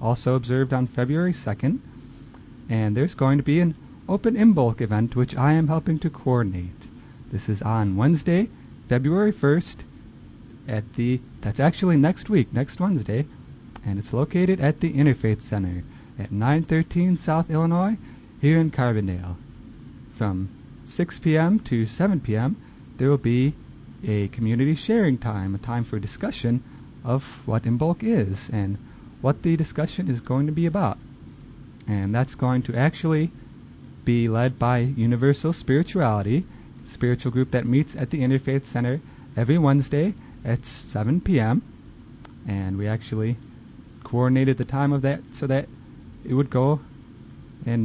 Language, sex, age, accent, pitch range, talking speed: English, male, 30-49, American, 115-150 Hz, 150 wpm